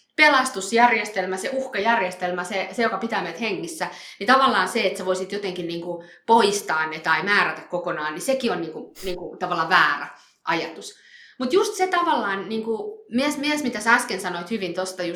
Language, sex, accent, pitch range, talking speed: Finnish, female, native, 185-285 Hz, 170 wpm